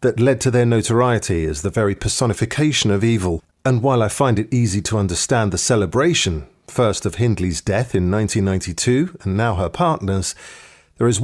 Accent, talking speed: British, 175 wpm